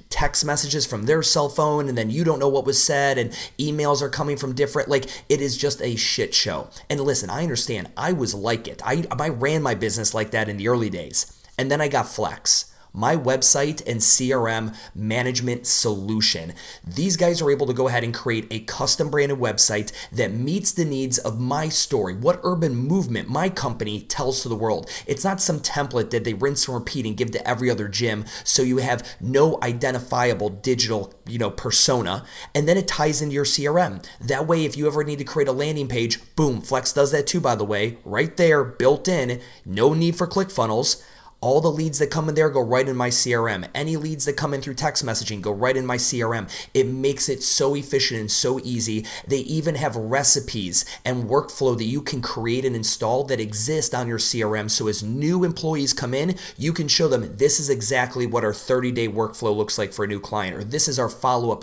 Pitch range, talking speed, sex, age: 115-145 Hz, 215 wpm, male, 30-49